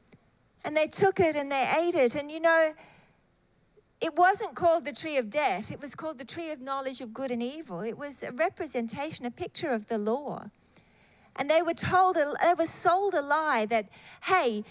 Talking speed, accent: 200 wpm, Australian